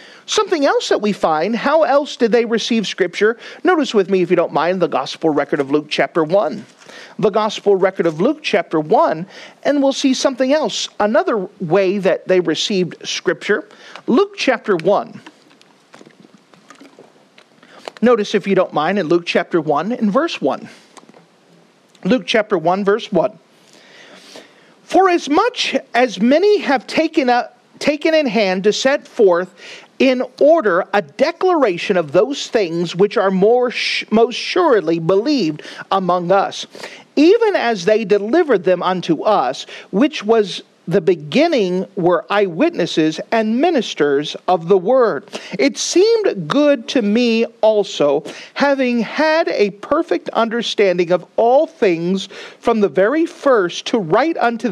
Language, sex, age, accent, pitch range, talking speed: English, male, 40-59, American, 190-280 Hz, 145 wpm